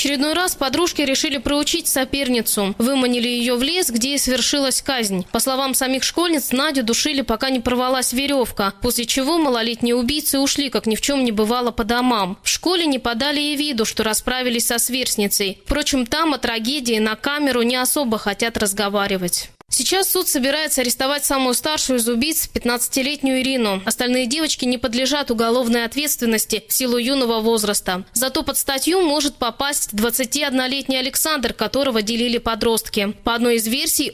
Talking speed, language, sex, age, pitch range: 160 wpm, Russian, female, 20-39, 225-270 Hz